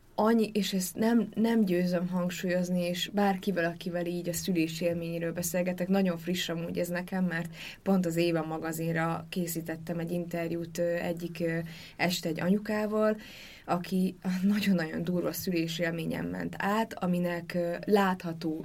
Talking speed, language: 125 wpm, Hungarian